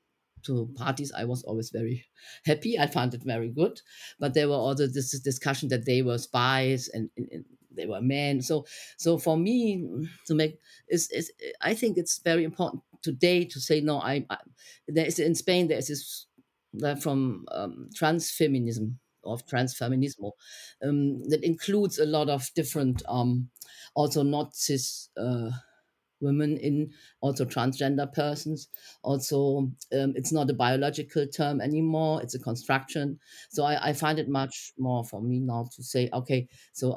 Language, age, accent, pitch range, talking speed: English, 50-69, German, 130-155 Hz, 160 wpm